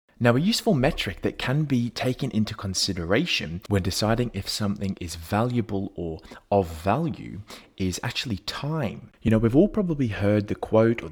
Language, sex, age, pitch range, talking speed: English, male, 30-49, 90-115 Hz, 165 wpm